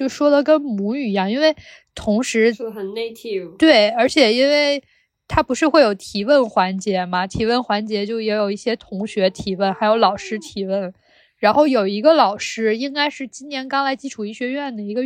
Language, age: Chinese, 20-39